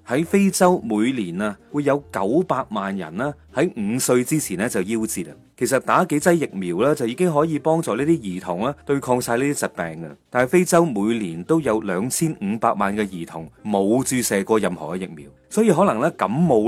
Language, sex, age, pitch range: Chinese, male, 30-49, 110-170 Hz